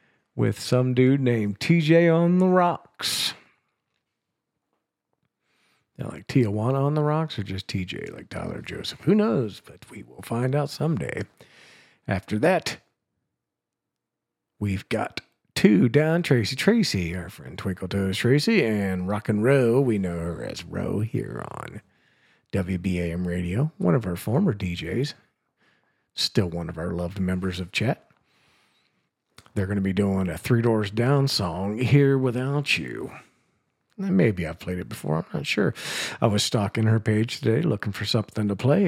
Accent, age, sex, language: American, 50-69, male, English